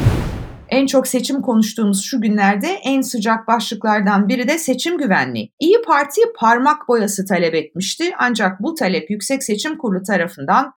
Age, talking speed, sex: 50-69, 145 wpm, female